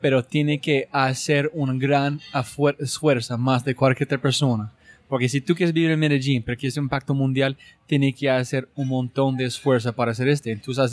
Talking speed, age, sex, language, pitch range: 205 wpm, 20-39, male, Spanish, 130-160 Hz